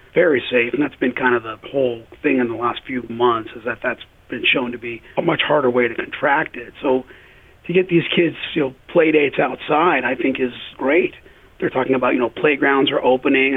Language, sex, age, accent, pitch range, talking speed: English, male, 40-59, American, 125-145 Hz, 225 wpm